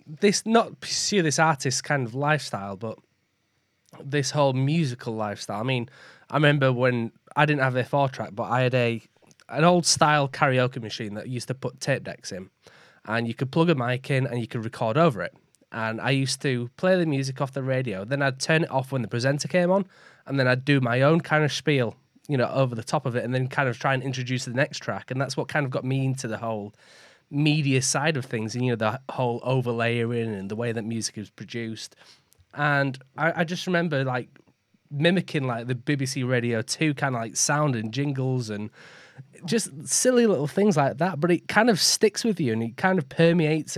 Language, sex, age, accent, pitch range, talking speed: English, male, 20-39, British, 120-155 Hz, 225 wpm